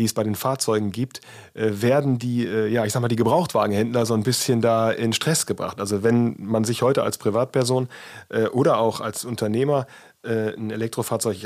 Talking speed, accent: 180 wpm, German